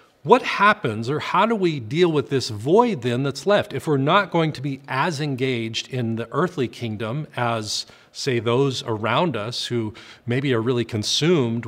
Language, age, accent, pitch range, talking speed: English, 40-59, American, 120-155 Hz, 180 wpm